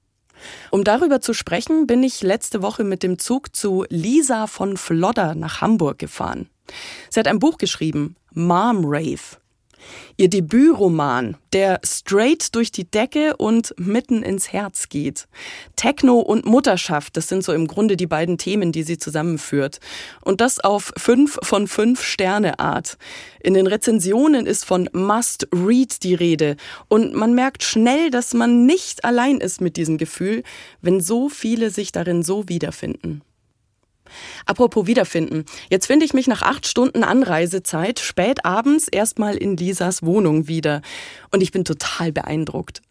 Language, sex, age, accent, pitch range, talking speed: German, female, 30-49, German, 175-240 Hz, 150 wpm